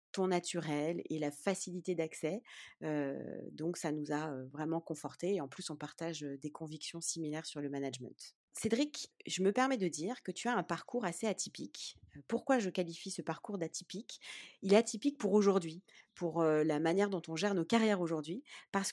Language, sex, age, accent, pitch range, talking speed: French, female, 30-49, French, 165-220 Hz, 180 wpm